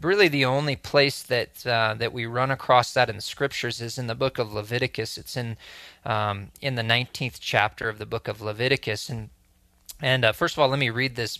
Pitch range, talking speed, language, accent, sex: 110-135 Hz, 220 wpm, English, American, male